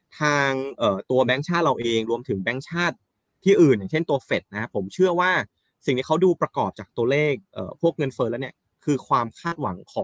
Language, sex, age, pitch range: Thai, male, 20-39, 110-160 Hz